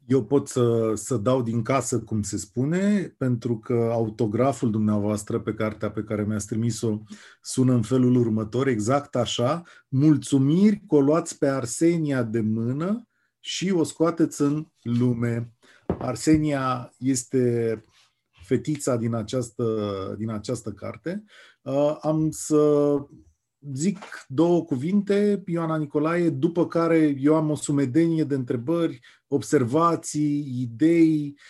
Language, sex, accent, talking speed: English, male, Romanian, 125 wpm